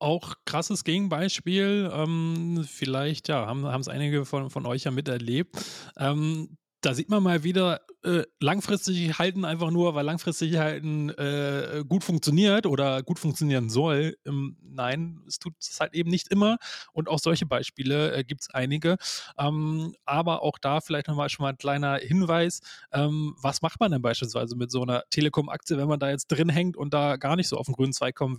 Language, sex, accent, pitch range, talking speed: German, male, German, 135-165 Hz, 185 wpm